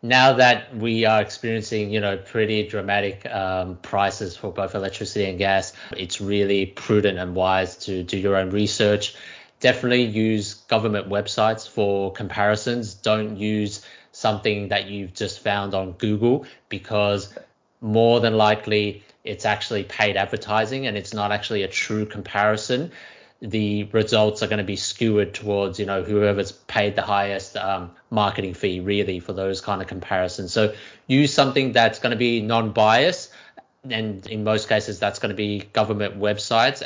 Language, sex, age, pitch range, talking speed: English, male, 20-39, 100-110 Hz, 160 wpm